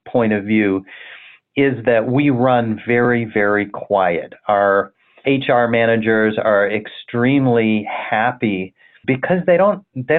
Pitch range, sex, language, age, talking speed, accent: 105-130 Hz, male, English, 40-59, 120 wpm, American